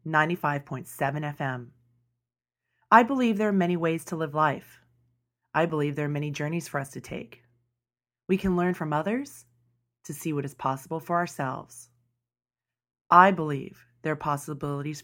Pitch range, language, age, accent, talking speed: 120-175 Hz, English, 30-49, American, 150 wpm